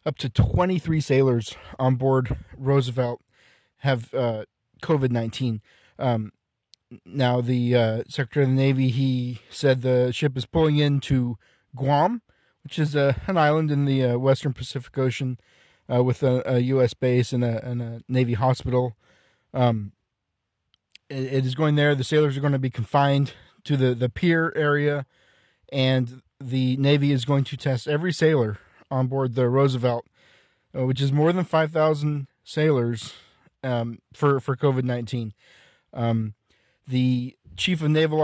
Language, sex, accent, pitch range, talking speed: English, male, American, 125-150 Hz, 150 wpm